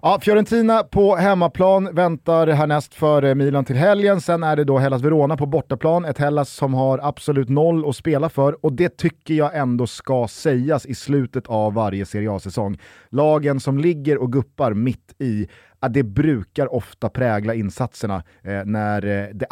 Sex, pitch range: male, 110-145 Hz